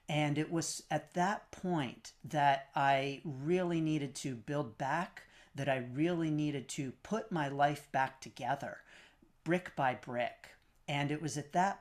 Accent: American